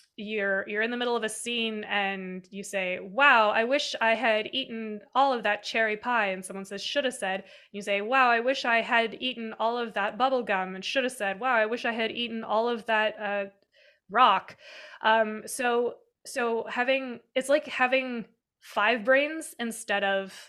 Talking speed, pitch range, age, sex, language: 195 wpm, 205-255 Hz, 20-39, female, English